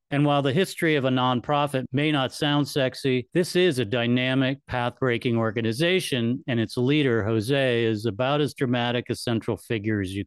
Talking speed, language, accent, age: 175 wpm, English, American, 50-69